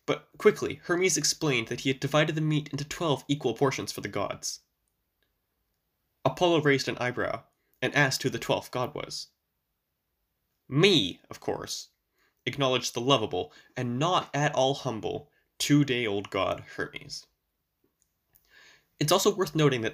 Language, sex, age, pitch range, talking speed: English, male, 10-29, 120-160 Hz, 140 wpm